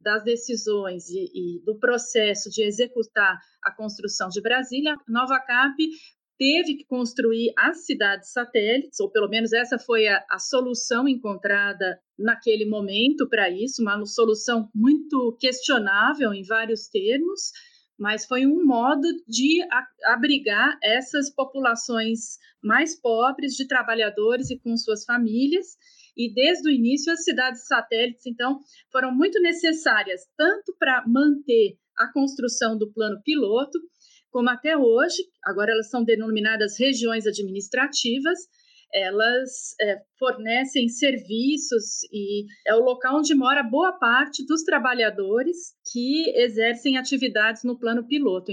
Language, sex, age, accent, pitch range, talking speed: Portuguese, female, 30-49, Brazilian, 225-295 Hz, 130 wpm